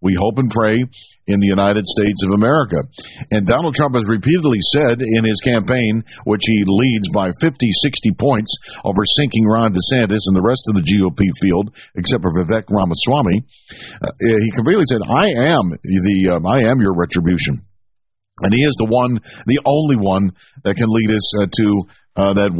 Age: 50-69